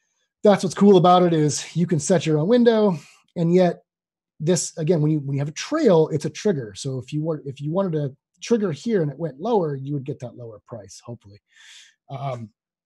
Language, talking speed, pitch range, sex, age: English, 225 wpm, 125-165 Hz, male, 30-49